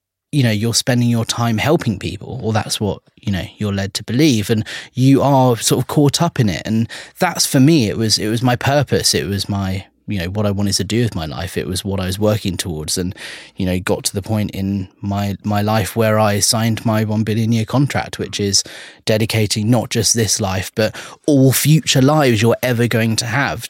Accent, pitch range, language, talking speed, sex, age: British, 100-120 Hz, English, 230 wpm, male, 30-49